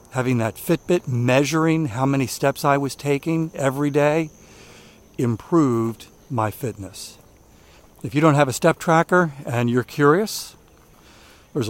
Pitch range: 115-150 Hz